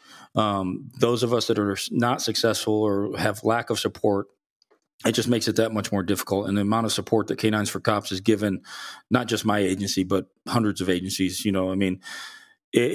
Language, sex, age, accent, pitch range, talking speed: English, male, 40-59, American, 100-115 Hz, 210 wpm